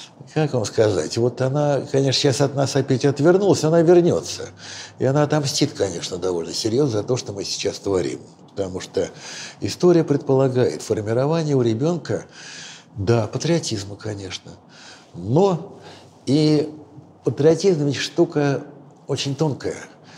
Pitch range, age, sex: 115-150 Hz, 60-79, male